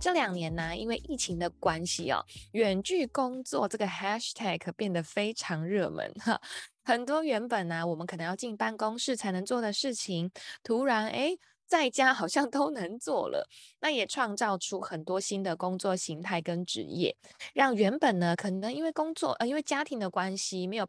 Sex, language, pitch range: female, Chinese, 180-250 Hz